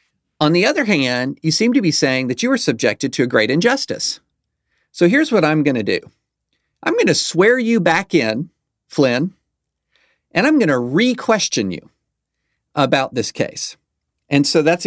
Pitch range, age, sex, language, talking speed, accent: 120-170 Hz, 40-59, male, English, 180 wpm, American